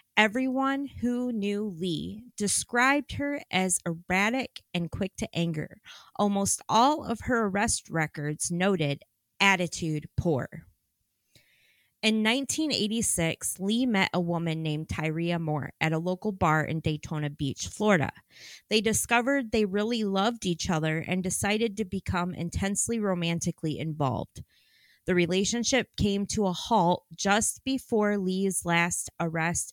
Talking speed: 125 wpm